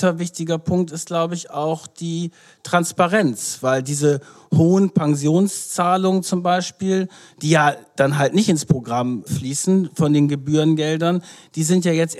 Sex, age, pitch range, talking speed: male, 50-69, 145-175 Hz, 150 wpm